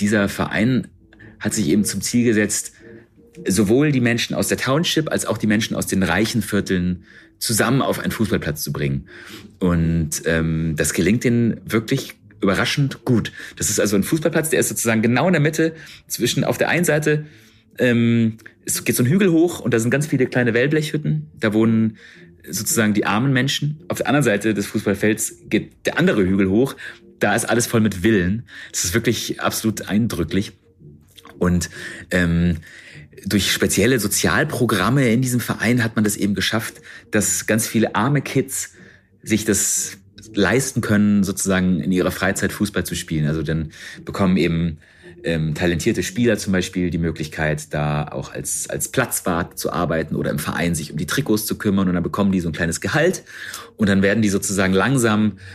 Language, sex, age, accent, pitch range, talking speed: German, male, 30-49, German, 90-115 Hz, 180 wpm